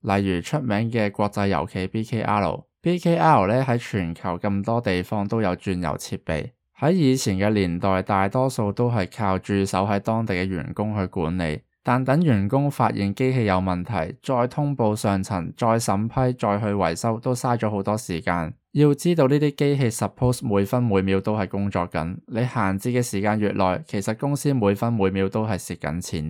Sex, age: male, 20-39